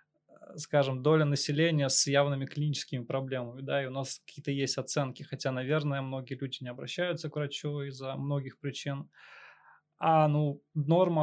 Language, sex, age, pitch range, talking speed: Russian, male, 20-39, 140-155 Hz, 145 wpm